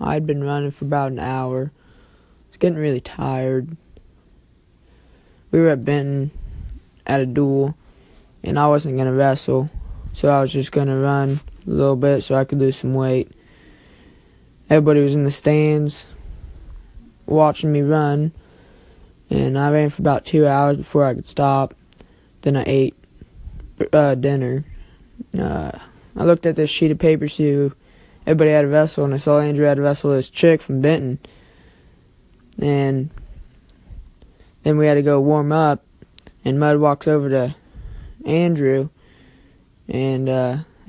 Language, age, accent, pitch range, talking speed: English, 20-39, American, 130-150 Hz, 155 wpm